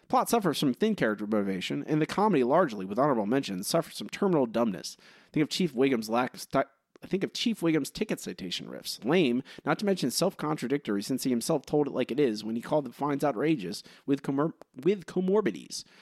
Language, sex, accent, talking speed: English, male, American, 205 wpm